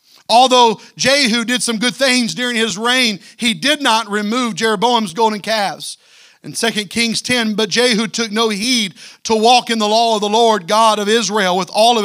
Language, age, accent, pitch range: English, 40-59, American, 205-255 Hz